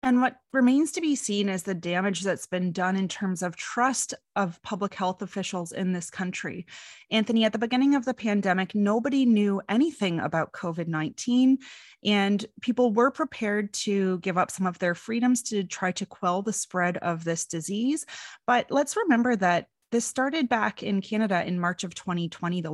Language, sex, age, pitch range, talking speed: English, female, 30-49, 180-230 Hz, 180 wpm